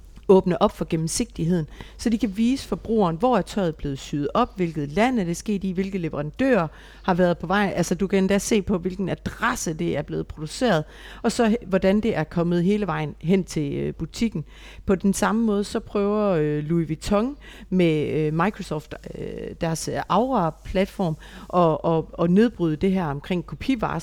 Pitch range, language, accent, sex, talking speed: 165-215 Hz, Danish, native, female, 190 wpm